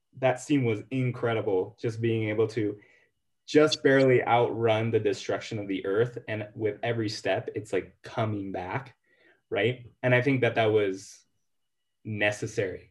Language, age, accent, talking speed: English, 20-39, American, 150 wpm